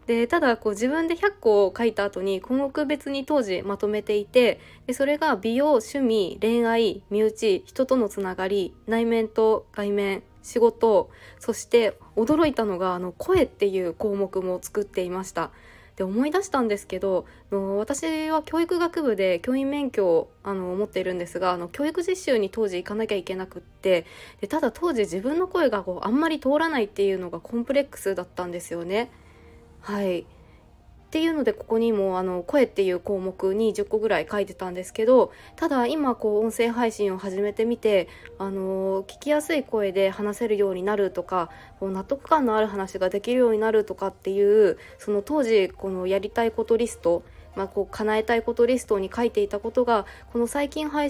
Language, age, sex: Japanese, 20-39, female